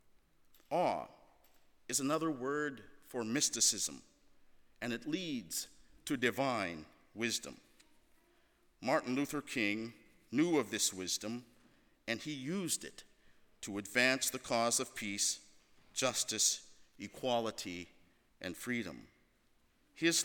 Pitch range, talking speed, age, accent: 100-130 Hz, 100 wpm, 50-69, American